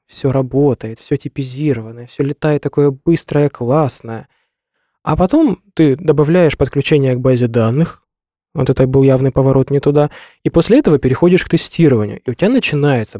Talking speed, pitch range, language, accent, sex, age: 155 wpm, 125-160 Hz, Russian, native, male, 20-39